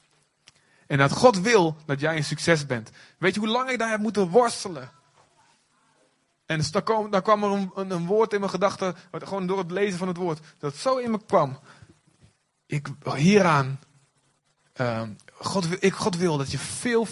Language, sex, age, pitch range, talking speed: Dutch, male, 20-39, 150-205 Hz, 195 wpm